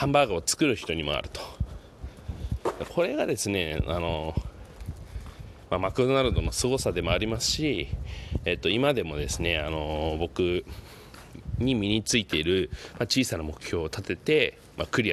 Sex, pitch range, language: male, 85-125 Hz, Japanese